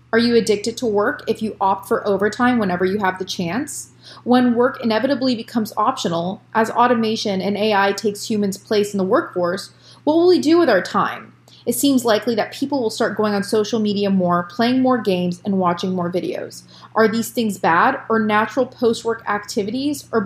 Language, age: English, 30-49